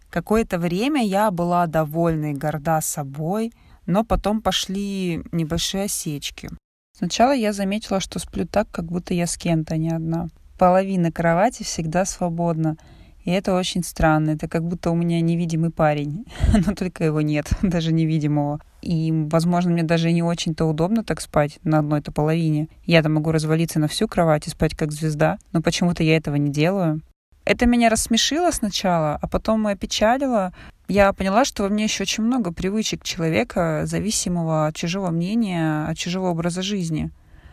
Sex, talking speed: female, 160 wpm